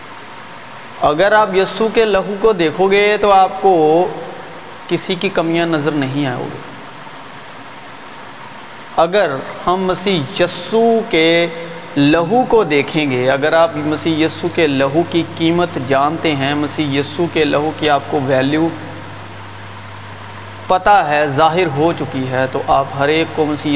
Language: Urdu